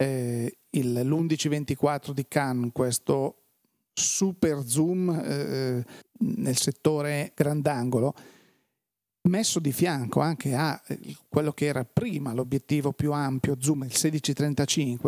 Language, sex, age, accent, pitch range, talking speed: Italian, male, 40-59, native, 140-170 Hz, 105 wpm